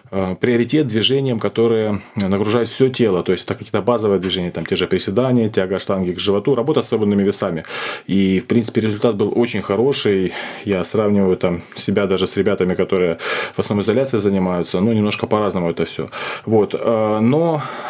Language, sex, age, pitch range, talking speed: Russian, male, 30-49, 105-120 Hz, 170 wpm